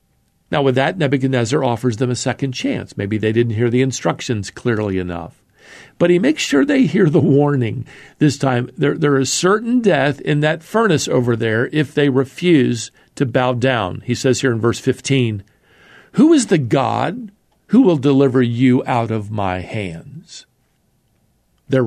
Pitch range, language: 115-160 Hz, English